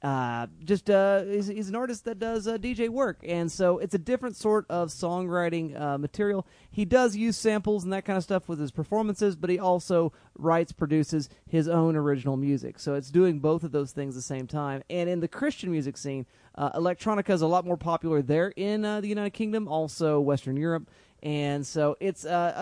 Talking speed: 210 wpm